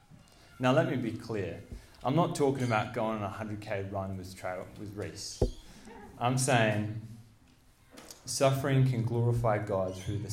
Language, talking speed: English, 145 wpm